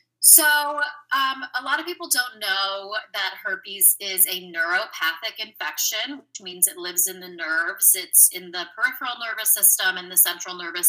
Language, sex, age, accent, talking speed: English, female, 30-49, American, 170 wpm